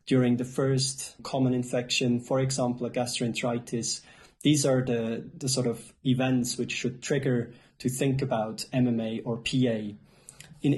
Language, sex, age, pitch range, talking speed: English, male, 30-49, 120-135 Hz, 145 wpm